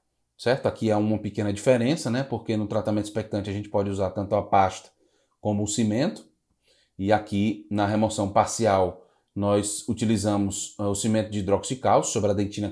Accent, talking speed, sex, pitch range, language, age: Brazilian, 170 wpm, male, 105-135 Hz, Portuguese, 20-39